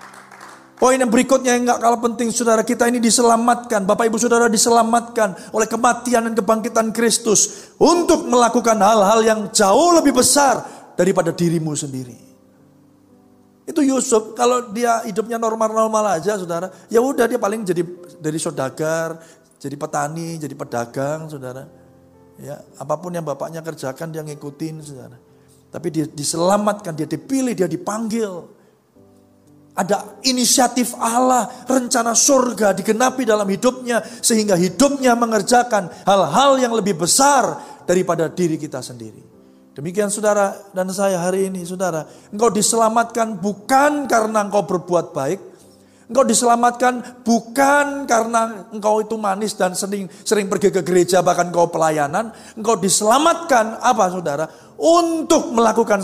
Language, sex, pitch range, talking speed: Indonesian, male, 170-235 Hz, 130 wpm